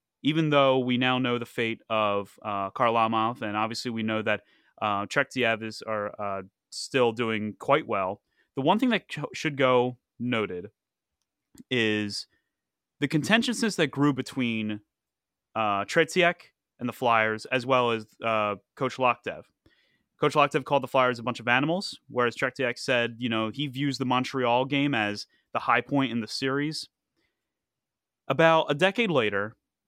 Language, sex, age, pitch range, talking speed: English, male, 30-49, 115-140 Hz, 160 wpm